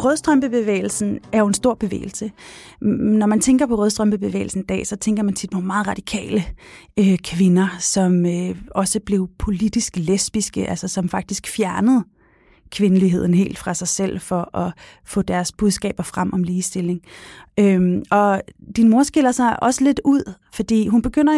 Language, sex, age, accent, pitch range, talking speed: Danish, female, 30-49, native, 190-225 Hz, 150 wpm